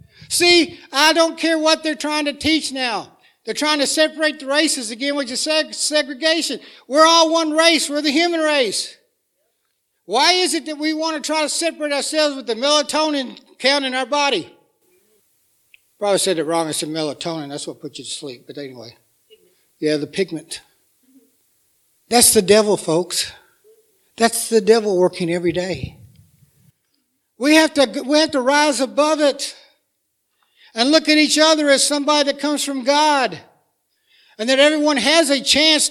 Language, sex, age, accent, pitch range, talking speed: English, male, 60-79, American, 225-305 Hz, 165 wpm